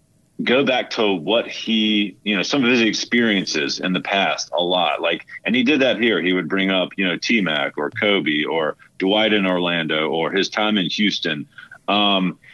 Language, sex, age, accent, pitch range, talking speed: English, male, 40-59, American, 100-150 Hz, 195 wpm